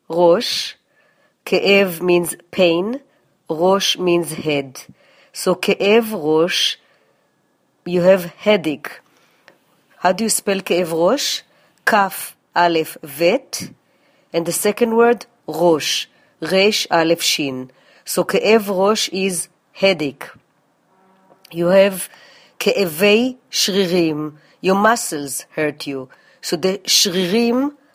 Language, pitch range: English, 170-210 Hz